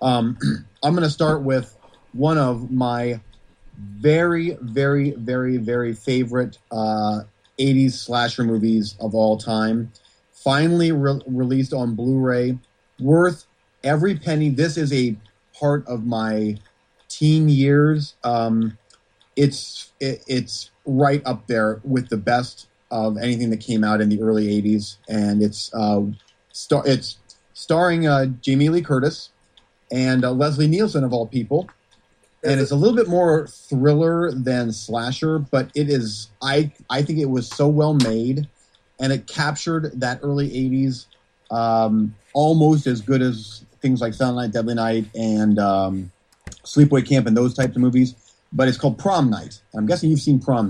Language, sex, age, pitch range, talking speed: English, male, 30-49, 110-140 Hz, 155 wpm